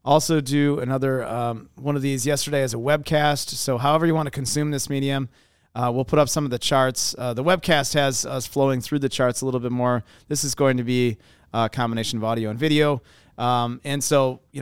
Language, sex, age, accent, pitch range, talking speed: English, male, 30-49, American, 105-135 Hz, 225 wpm